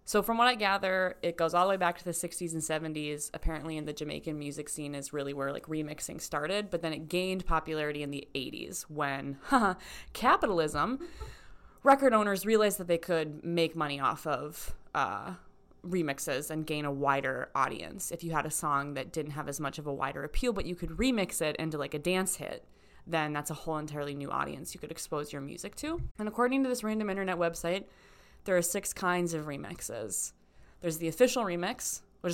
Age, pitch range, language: 20-39, 150-180 Hz, English